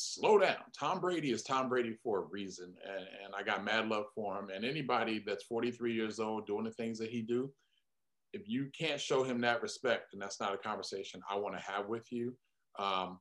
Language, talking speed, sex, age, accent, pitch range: English, 225 wpm, male, 30-49, American, 105-125 Hz